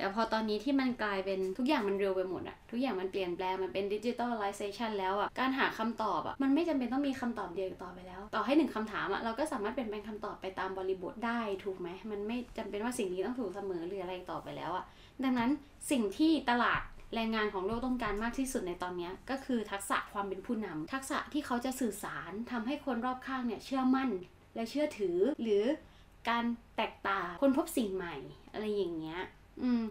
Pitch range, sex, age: 195-260 Hz, female, 20-39